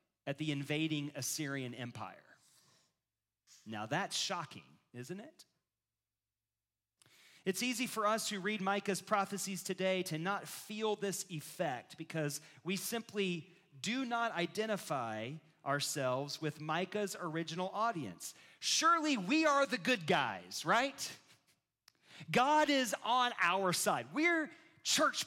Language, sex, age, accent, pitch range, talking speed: English, male, 40-59, American, 150-210 Hz, 115 wpm